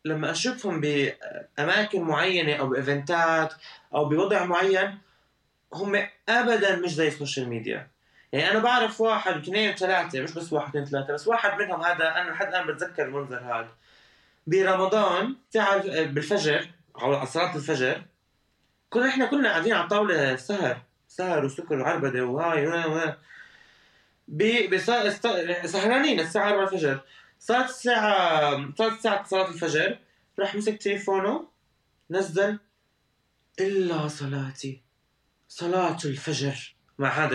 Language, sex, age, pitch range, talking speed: Arabic, male, 20-39, 155-225 Hz, 120 wpm